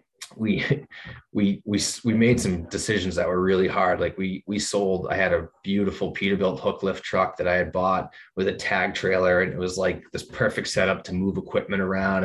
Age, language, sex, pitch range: 20-39, English, male, 90-100 Hz